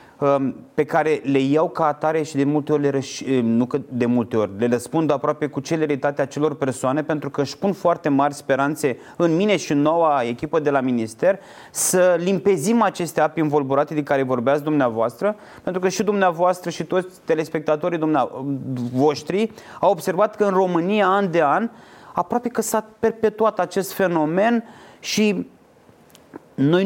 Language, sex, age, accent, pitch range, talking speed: Romanian, male, 30-49, native, 140-185 Hz, 165 wpm